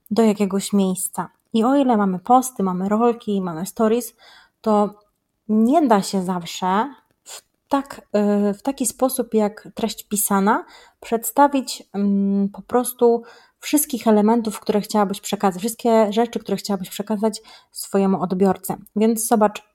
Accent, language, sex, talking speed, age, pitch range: native, Polish, female, 130 wpm, 30-49, 200-245 Hz